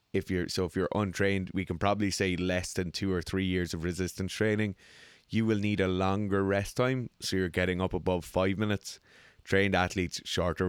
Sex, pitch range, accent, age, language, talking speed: male, 90-105 Hz, Irish, 20-39, English, 200 wpm